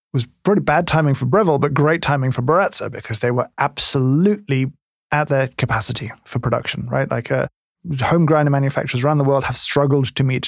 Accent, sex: British, male